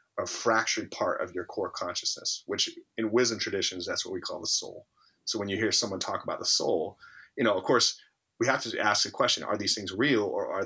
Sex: male